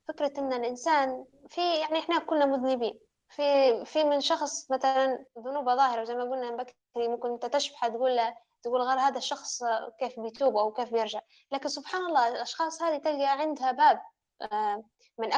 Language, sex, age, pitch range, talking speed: Arabic, female, 10-29, 230-285 Hz, 160 wpm